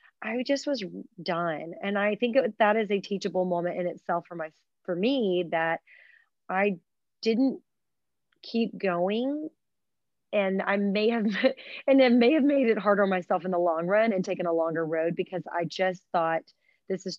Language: English